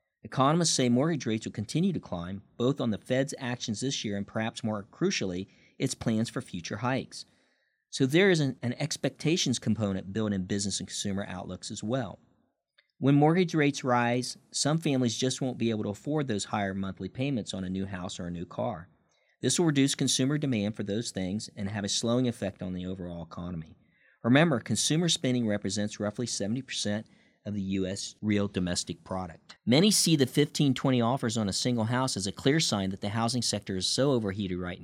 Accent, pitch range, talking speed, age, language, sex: American, 100-130 Hz, 195 wpm, 50-69, English, male